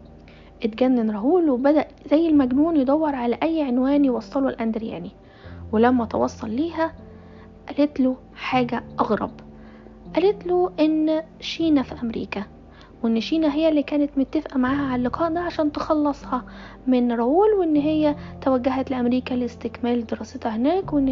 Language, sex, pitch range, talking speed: Arabic, female, 245-305 Hz, 130 wpm